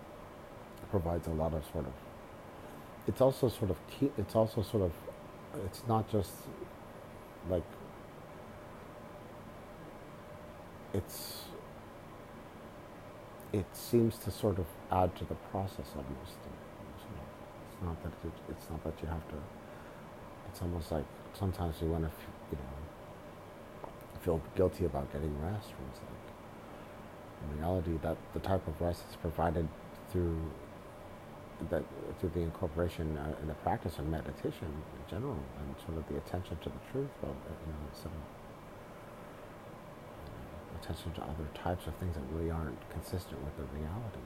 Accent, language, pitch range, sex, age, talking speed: American, English, 75-95 Hz, male, 50-69, 145 wpm